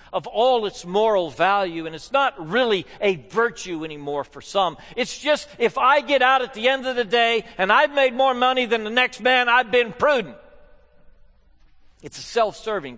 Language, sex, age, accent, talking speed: English, male, 60-79, American, 190 wpm